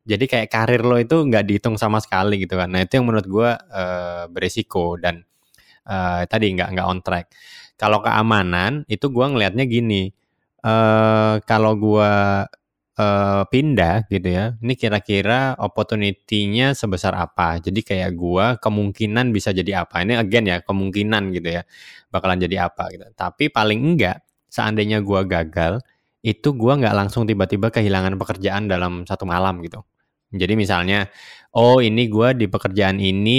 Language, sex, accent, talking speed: Indonesian, male, native, 145 wpm